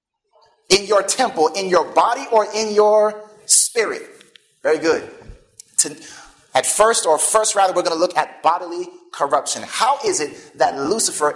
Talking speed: 160 wpm